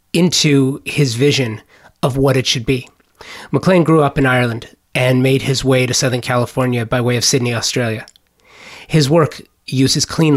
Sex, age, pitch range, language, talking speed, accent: male, 30-49, 125-145 Hz, English, 170 wpm, American